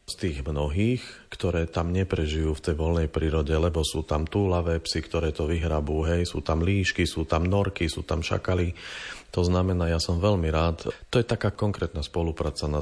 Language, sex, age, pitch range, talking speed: Slovak, male, 40-59, 80-95 Hz, 185 wpm